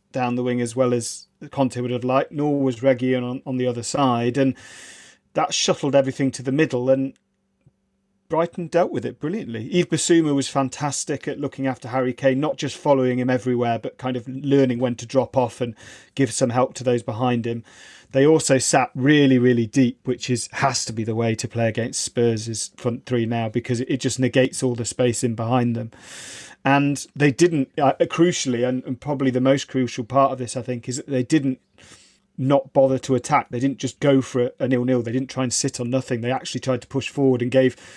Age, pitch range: 40-59, 125-140 Hz